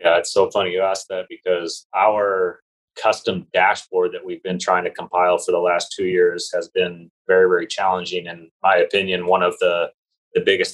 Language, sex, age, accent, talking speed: English, male, 30-49, American, 195 wpm